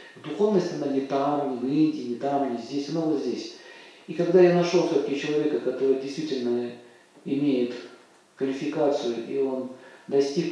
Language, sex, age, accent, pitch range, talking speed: Russian, male, 40-59, native, 125-175 Hz, 145 wpm